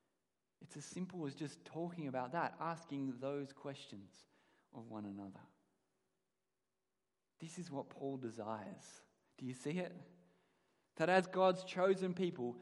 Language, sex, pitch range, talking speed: English, male, 120-175 Hz, 135 wpm